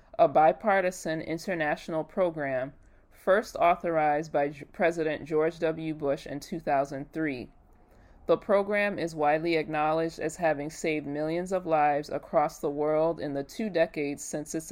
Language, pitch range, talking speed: English, 145-175 Hz, 135 wpm